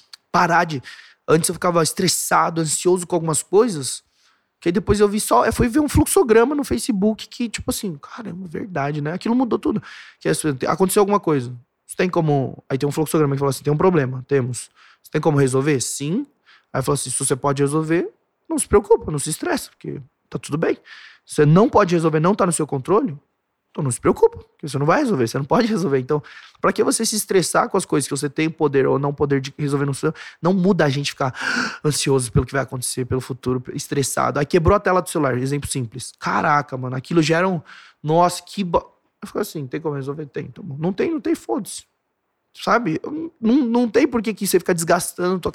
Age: 20-39